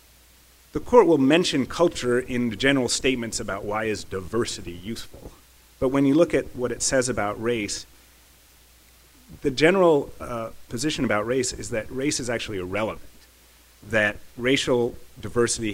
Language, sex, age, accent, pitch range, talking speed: English, male, 30-49, American, 90-125 Hz, 150 wpm